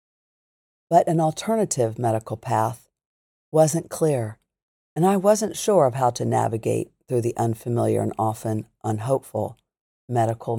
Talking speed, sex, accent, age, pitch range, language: 125 wpm, female, American, 50-69, 110-140 Hz, English